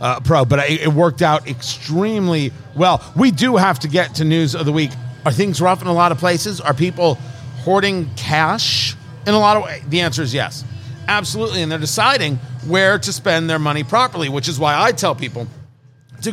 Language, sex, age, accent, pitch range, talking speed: English, male, 40-59, American, 145-200 Hz, 210 wpm